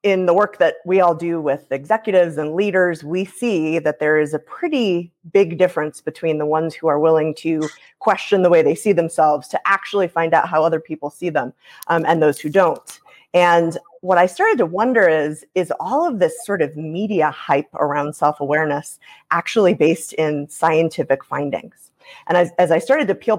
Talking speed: 195 wpm